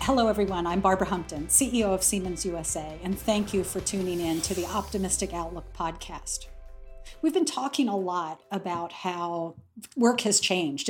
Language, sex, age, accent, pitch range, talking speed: English, female, 50-69, American, 185-245 Hz, 165 wpm